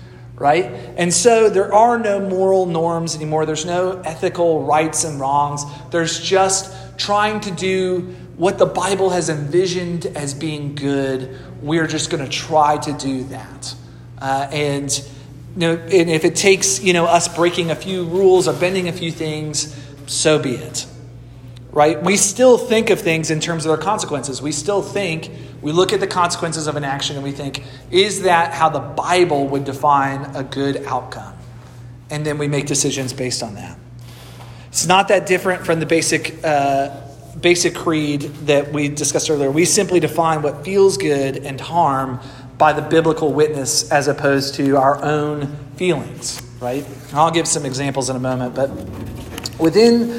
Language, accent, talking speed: English, American, 175 wpm